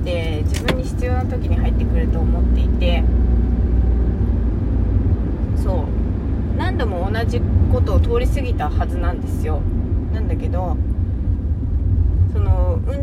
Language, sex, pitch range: Japanese, female, 70-85 Hz